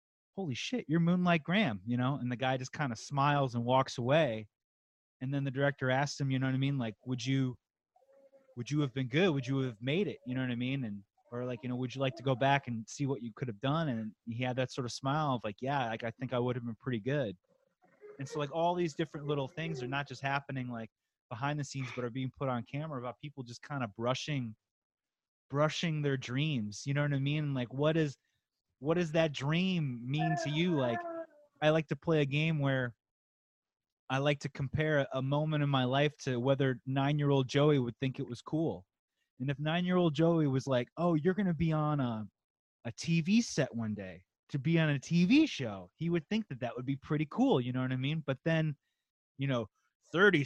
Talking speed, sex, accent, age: 235 wpm, male, American, 30-49